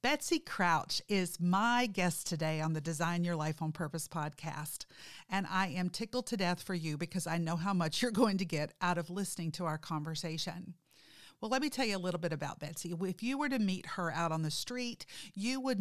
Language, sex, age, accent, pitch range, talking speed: English, female, 50-69, American, 165-215 Hz, 225 wpm